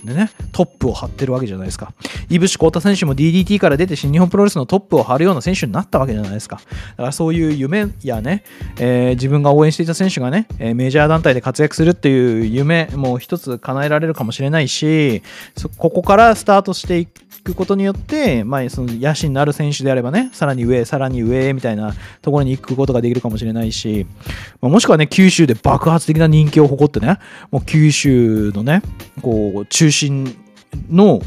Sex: male